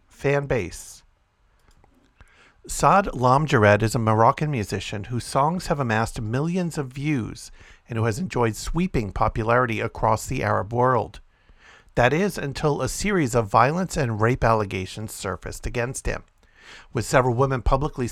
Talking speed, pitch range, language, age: 140 wpm, 110-140 Hz, English, 50-69